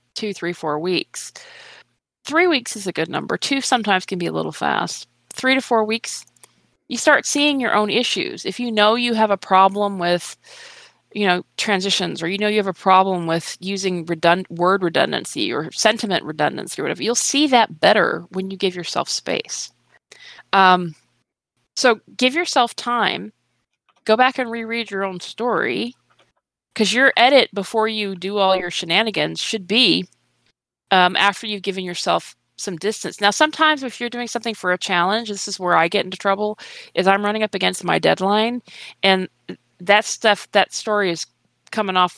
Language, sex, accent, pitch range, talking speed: English, female, American, 180-235 Hz, 180 wpm